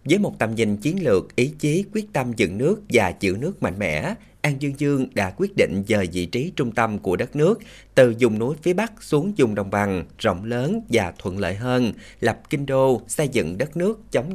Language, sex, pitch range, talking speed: Vietnamese, male, 105-140 Hz, 225 wpm